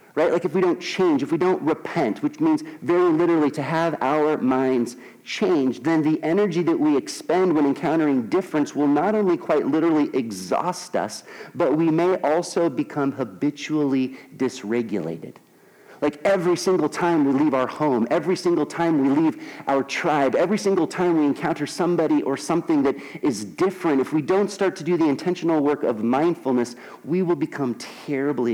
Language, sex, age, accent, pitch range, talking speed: English, male, 40-59, American, 105-160 Hz, 175 wpm